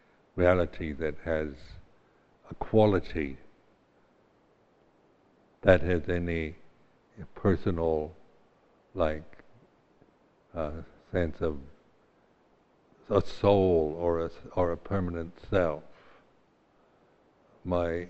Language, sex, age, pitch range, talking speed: English, male, 60-79, 80-100 Hz, 70 wpm